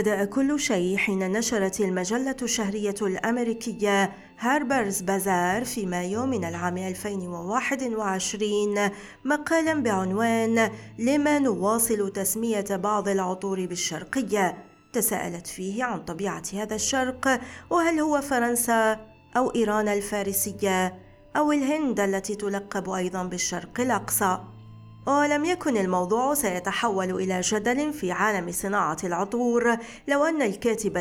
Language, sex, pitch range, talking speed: Arabic, female, 195-245 Hz, 105 wpm